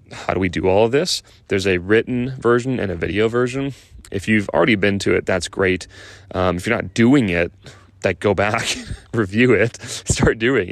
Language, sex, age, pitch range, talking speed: English, male, 30-49, 95-110 Hz, 200 wpm